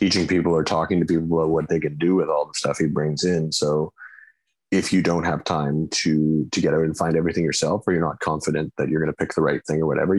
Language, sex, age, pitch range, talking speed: English, male, 30-49, 75-80 Hz, 270 wpm